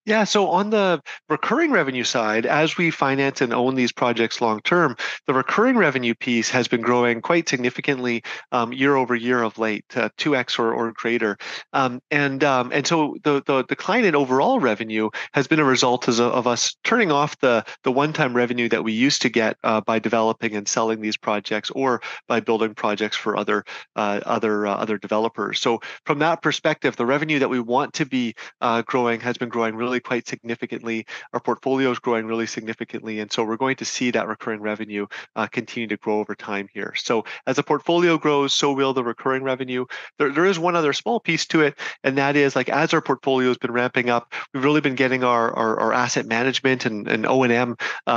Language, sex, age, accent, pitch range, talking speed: English, male, 30-49, American, 115-135 Hz, 205 wpm